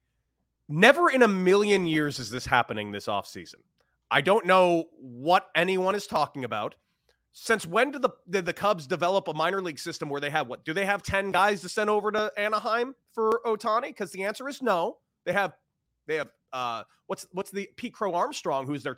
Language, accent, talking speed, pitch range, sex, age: English, American, 200 wpm, 175-280 Hz, male, 30-49